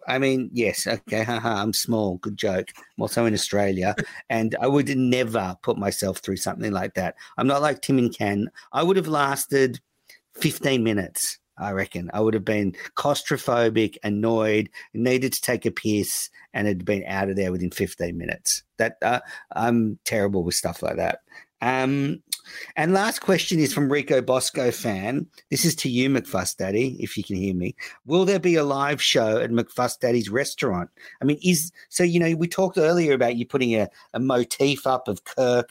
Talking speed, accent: 190 wpm, Australian